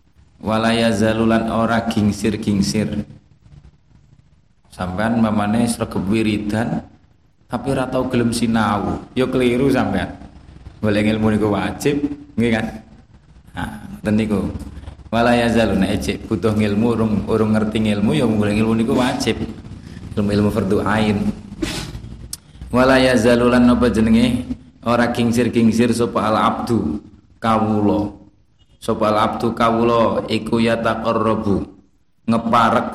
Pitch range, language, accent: 105-115 Hz, Indonesian, native